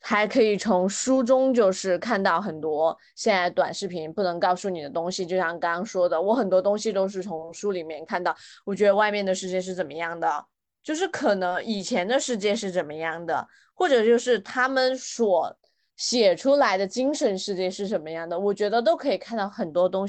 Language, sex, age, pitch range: Chinese, female, 20-39, 175-220 Hz